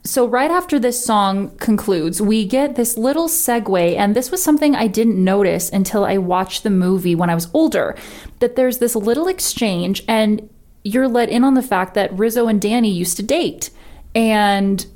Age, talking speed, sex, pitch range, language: 20-39, 190 wpm, female, 180-220 Hz, English